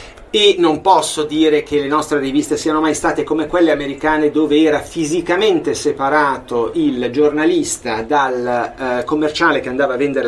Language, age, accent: Italian, 30-49, native